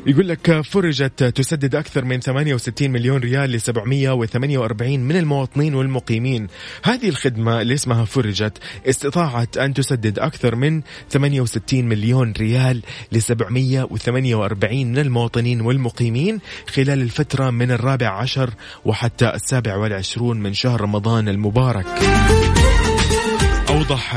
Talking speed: 105 wpm